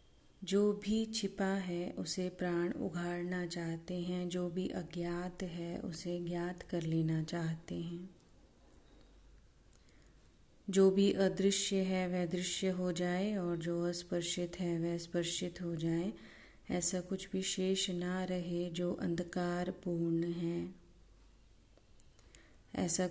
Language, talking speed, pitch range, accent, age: Hindi, 120 wpm, 170-185 Hz, native, 30-49